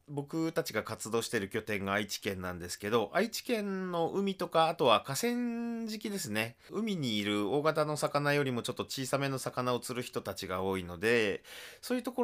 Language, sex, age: Japanese, male, 30-49